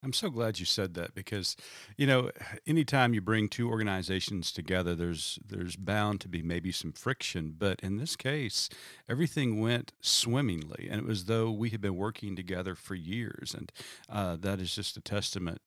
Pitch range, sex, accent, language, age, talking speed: 95-135 Hz, male, American, English, 40-59, 185 wpm